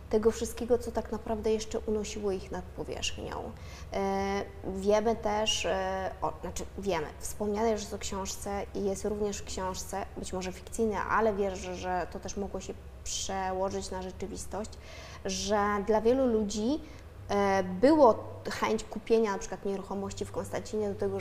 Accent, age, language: native, 20-39, Polish